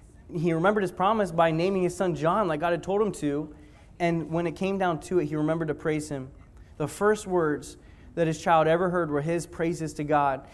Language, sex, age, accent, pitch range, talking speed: English, male, 20-39, American, 170-195 Hz, 230 wpm